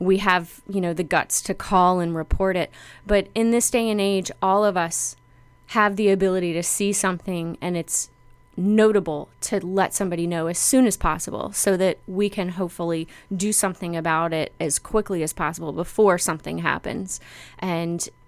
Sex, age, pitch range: female, 20-39, 160-195 Hz